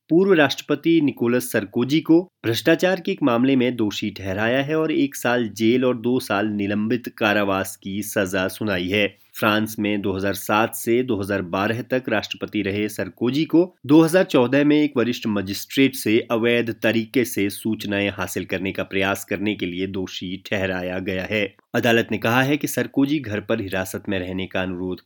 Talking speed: 170 wpm